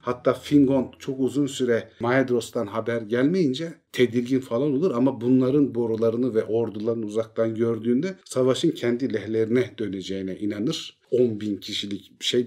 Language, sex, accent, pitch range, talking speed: Turkish, male, native, 105-135 Hz, 130 wpm